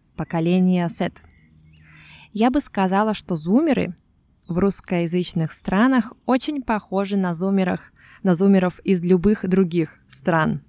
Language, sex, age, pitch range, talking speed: Russian, female, 20-39, 165-205 Hz, 105 wpm